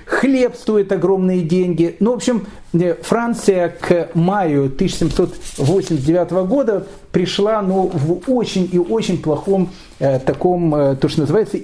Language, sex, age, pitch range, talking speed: Russian, male, 40-59, 155-215 Hz, 130 wpm